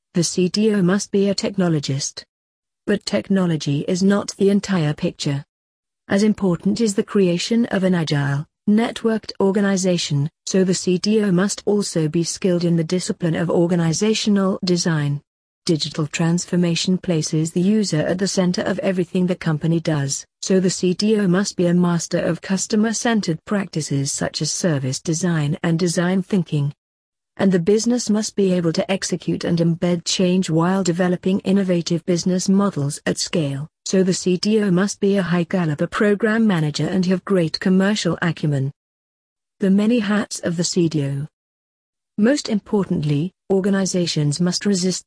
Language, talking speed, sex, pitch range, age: English, 145 wpm, female, 160-200 Hz, 50-69